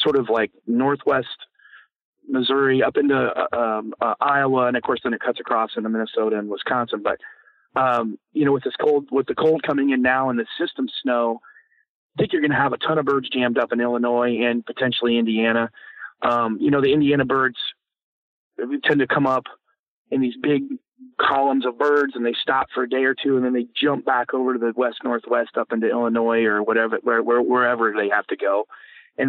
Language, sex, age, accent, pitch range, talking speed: English, male, 30-49, American, 120-145 Hz, 205 wpm